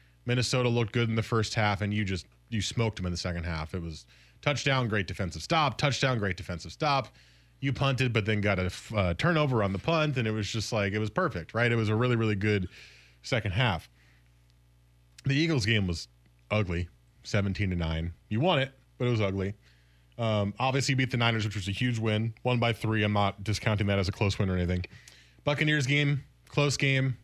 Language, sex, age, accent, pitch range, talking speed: English, male, 20-39, American, 90-130 Hz, 210 wpm